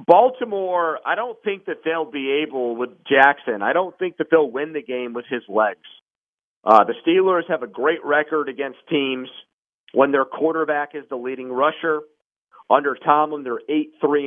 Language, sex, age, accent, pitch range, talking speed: English, male, 40-59, American, 130-160 Hz, 170 wpm